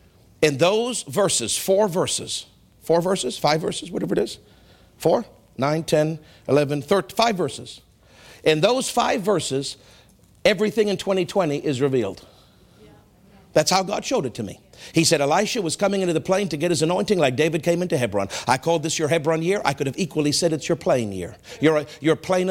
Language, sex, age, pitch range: English, male, 50-69, 145-195 Hz